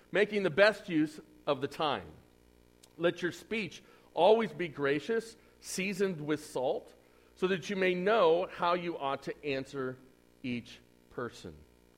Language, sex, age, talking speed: English, male, 40-59, 140 wpm